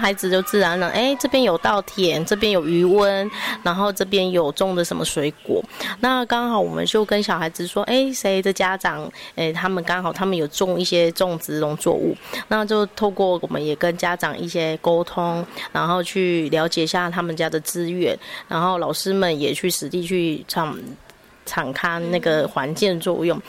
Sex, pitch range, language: female, 170-200 Hz, Chinese